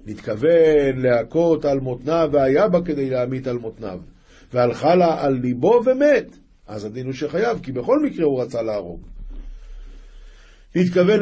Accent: native